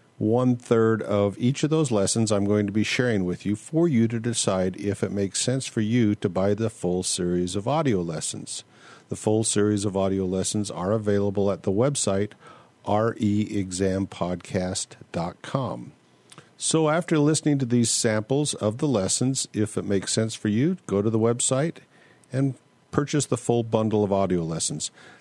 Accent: American